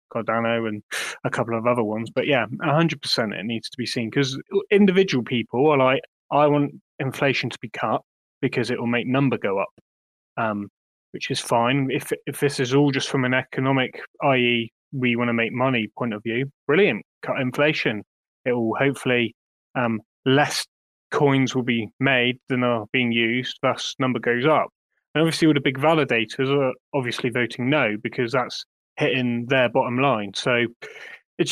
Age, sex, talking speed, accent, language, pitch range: 20-39, male, 175 wpm, British, English, 120-145 Hz